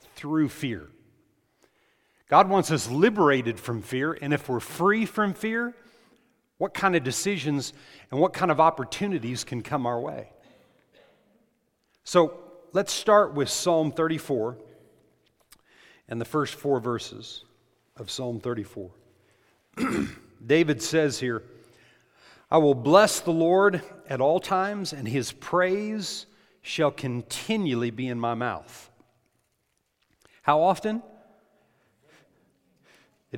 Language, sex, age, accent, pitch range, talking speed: English, male, 50-69, American, 130-185 Hz, 115 wpm